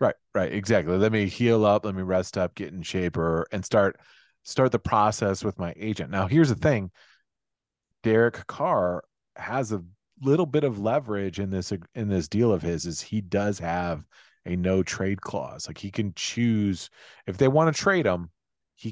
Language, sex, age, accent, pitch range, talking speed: English, male, 30-49, American, 90-115 Hz, 195 wpm